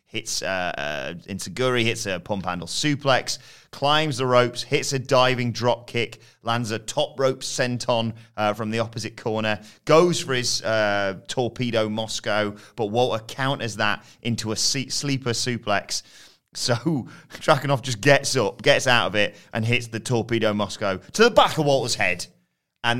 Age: 30-49